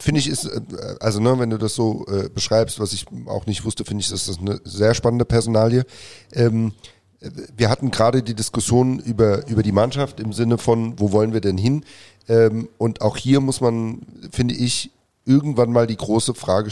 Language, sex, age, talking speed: German, male, 40-59, 195 wpm